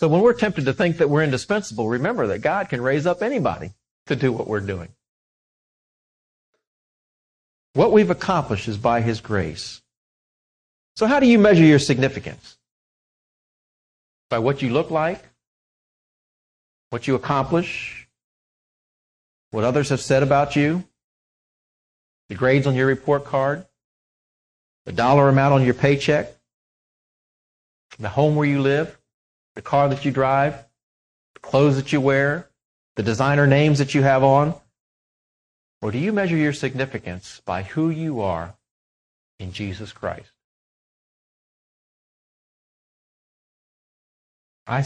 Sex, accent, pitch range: male, American, 105-150 Hz